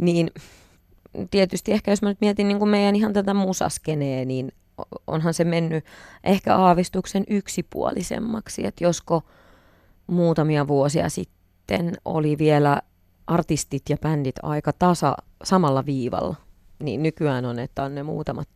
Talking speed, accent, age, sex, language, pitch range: 130 wpm, native, 30-49, female, Finnish, 135-175 Hz